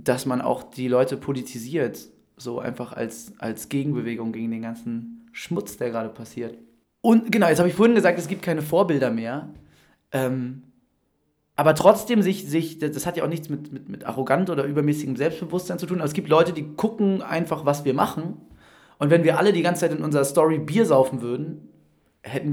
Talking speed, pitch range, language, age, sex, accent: 195 wpm, 120-160 Hz, German, 20-39, male, German